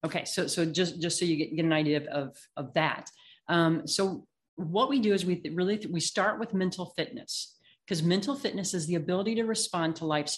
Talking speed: 225 wpm